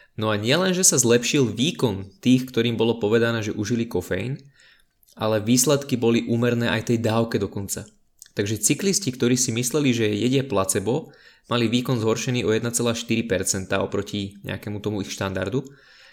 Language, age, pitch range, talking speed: Slovak, 20-39, 105-130 Hz, 150 wpm